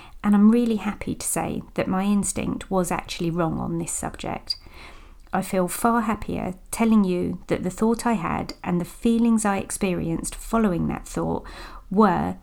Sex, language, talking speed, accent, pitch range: female, English, 170 wpm, British, 170-220 Hz